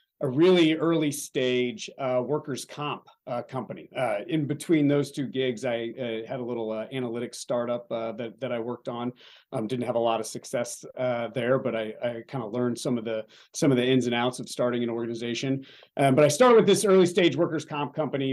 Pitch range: 120-145 Hz